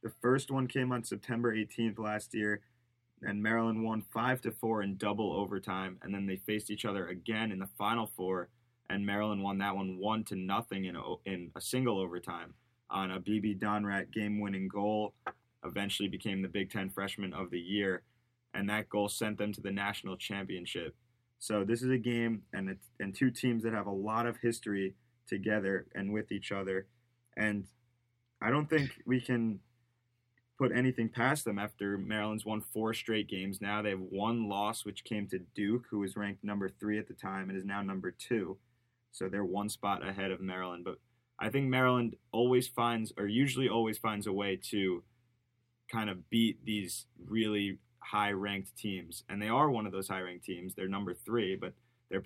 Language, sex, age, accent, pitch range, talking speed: English, male, 20-39, American, 100-115 Hz, 190 wpm